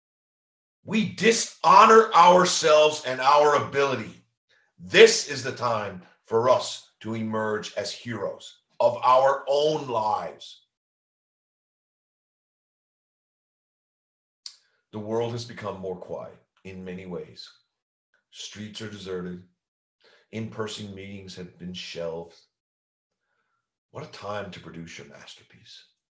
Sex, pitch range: male, 95-155 Hz